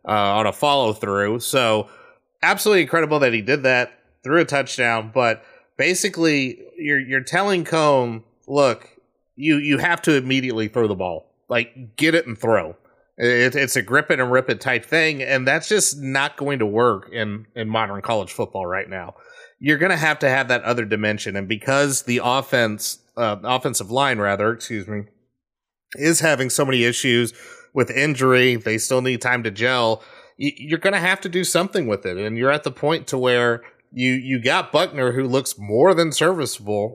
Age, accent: 30-49, American